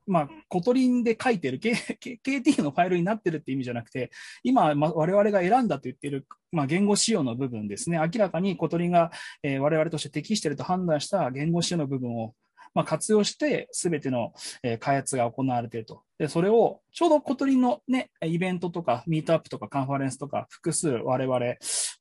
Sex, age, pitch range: male, 20-39, 125-185 Hz